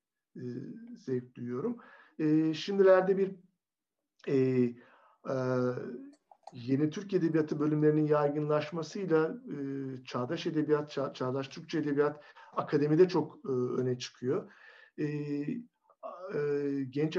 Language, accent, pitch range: Turkish, native, 135-175 Hz